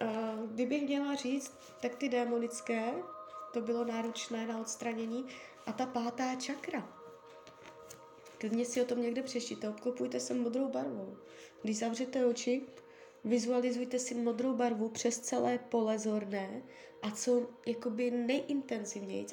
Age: 20-39